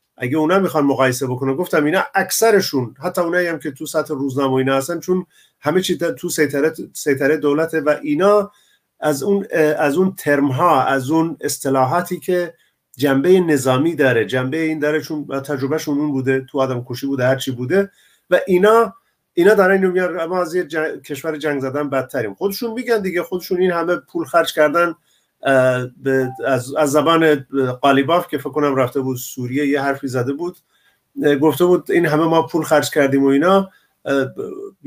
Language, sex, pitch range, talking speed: Persian, male, 140-180 Hz, 165 wpm